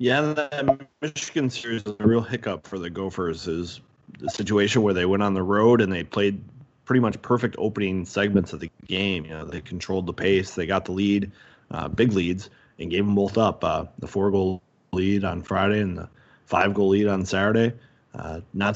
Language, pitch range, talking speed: English, 95-120 Hz, 195 wpm